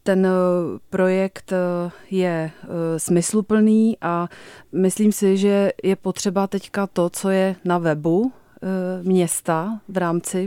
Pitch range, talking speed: 180-195 Hz, 110 wpm